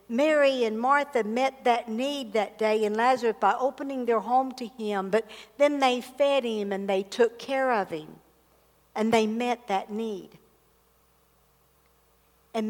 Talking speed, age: 155 wpm, 60-79